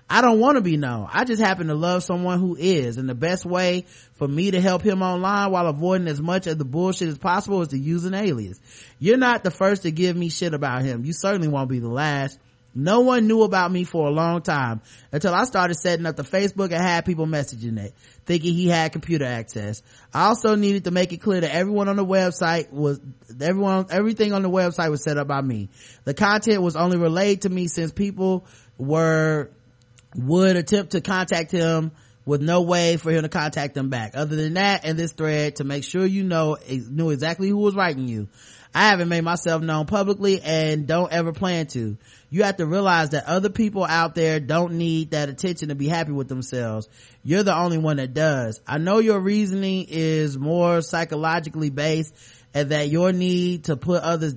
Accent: American